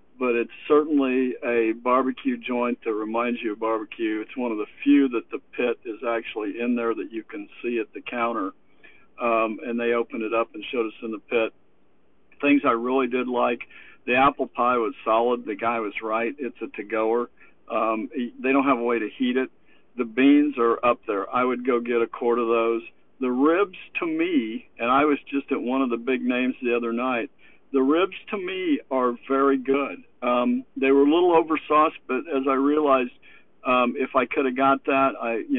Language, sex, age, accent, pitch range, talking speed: English, male, 60-79, American, 120-140 Hz, 205 wpm